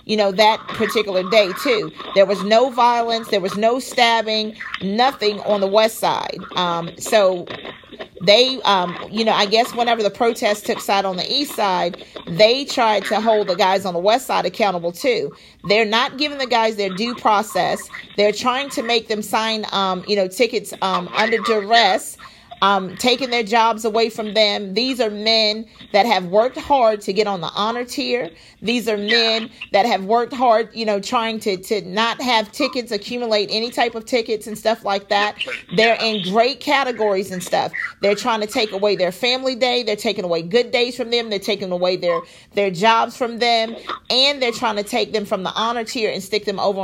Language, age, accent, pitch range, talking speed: English, 40-59, American, 200-235 Hz, 200 wpm